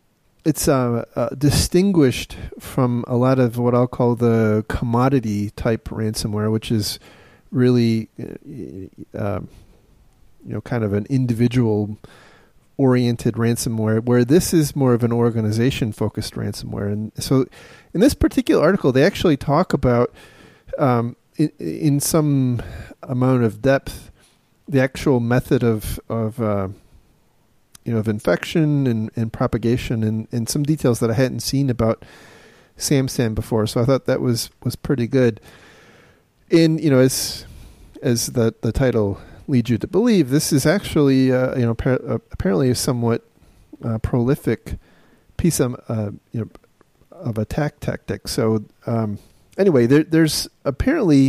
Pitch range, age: 110-135 Hz, 40-59